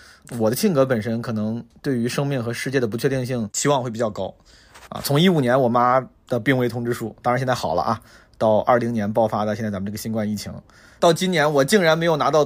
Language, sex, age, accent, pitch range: Chinese, male, 30-49, native, 120-155 Hz